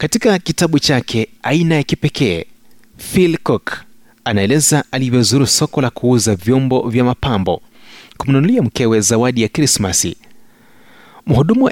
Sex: male